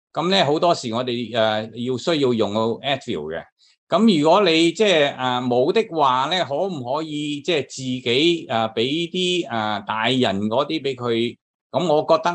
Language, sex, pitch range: Chinese, male, 115-155 Hz